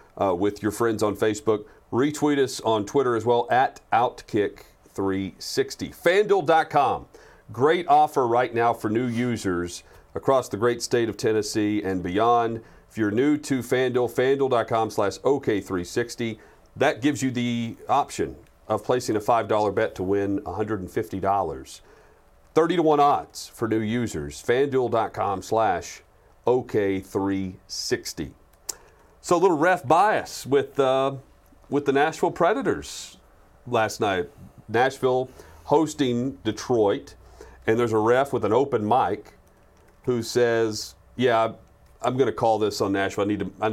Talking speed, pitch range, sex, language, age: 135 wpm, 100-130 Hz, male, English, 40-59